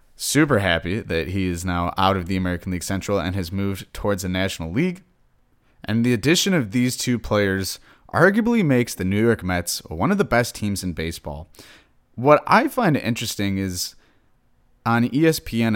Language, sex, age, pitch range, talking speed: English, male, 30-49, 90-125 Hz, 175 wpm